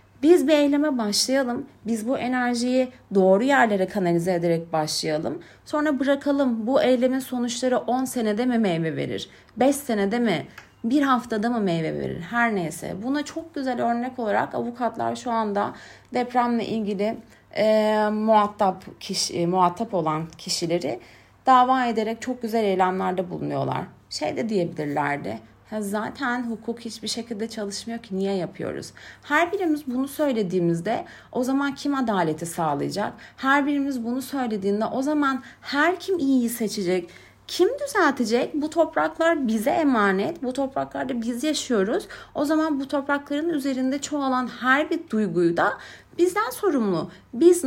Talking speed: 135 wpm